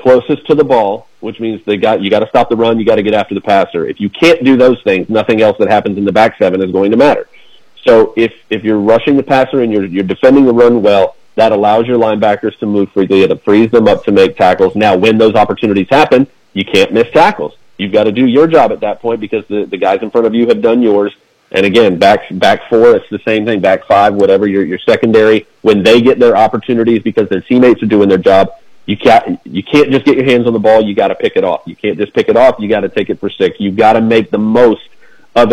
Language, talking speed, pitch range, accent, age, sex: English, 270 wpm, 105-135 Hz, American, 40-59, male